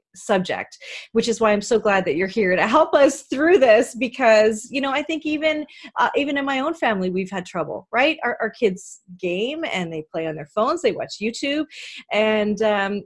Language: English